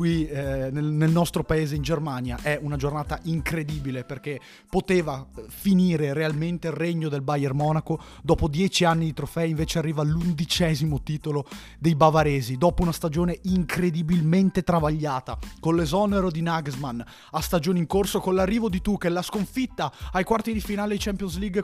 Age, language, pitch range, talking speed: 30-49, Italian, 145-185 Hz, 160 wpm